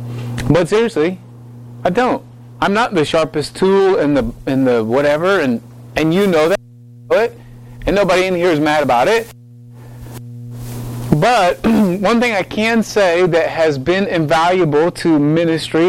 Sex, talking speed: male, 150 wpm